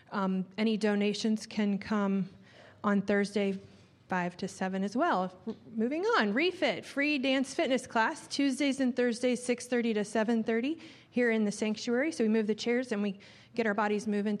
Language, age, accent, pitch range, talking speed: English, 30-49, American, 205-250 Hz, 165 wpm